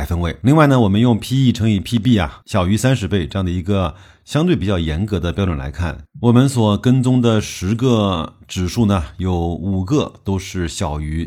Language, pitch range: Chinese, 85-110 Hz